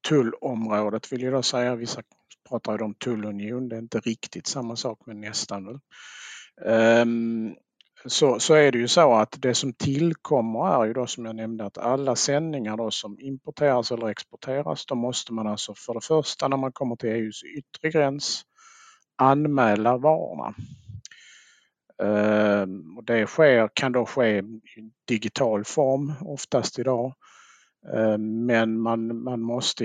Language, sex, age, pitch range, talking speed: Swedish, male, 50-69, 110-135 Hz, 145 wpm